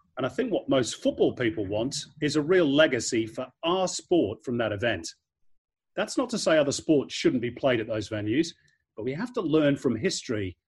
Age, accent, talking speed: 40-59, British, 210 wpm